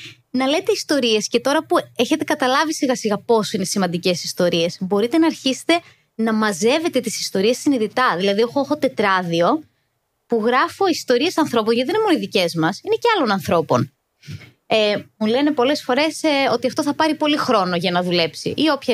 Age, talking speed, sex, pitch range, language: 20-39, 175 wpm, female, 195-290 Hz, Greek